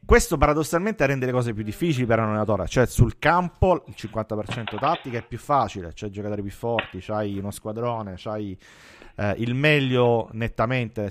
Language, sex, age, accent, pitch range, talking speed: Italian, male, 30-49, native, 105-125 Hz, 170 wpm